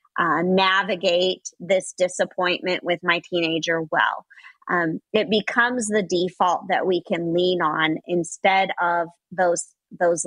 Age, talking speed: 30-49, 130 wpm